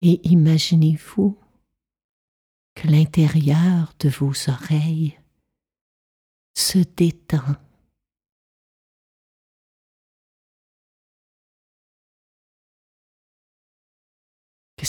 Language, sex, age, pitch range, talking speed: French, female, 50-69, 140-165 Hz, 40 wpm